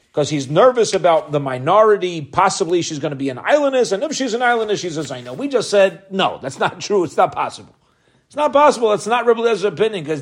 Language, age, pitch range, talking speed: English, 40-59, 140-205 Hz, 235 wpm